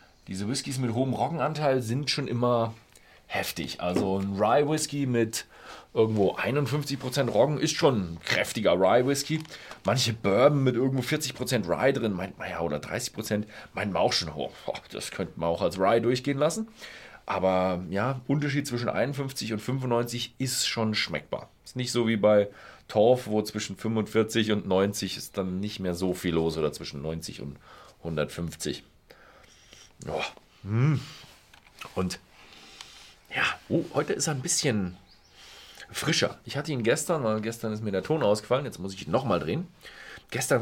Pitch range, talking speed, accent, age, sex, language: 95-130 Hz, 155 wpm, German, 40-59, male, German